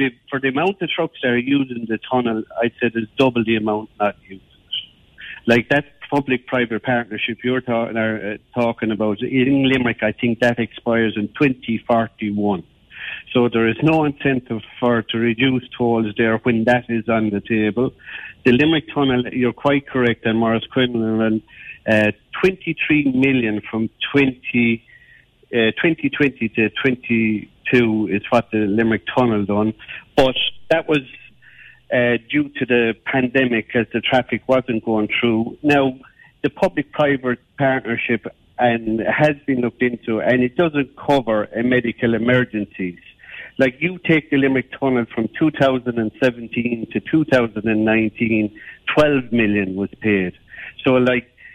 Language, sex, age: English, male, 50-69